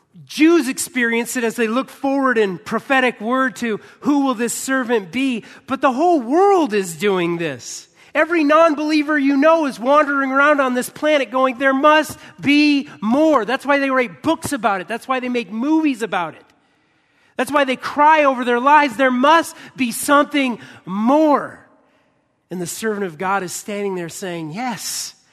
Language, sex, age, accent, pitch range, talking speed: English, male, 30-49, American, 180-275 Hz, 175 wpm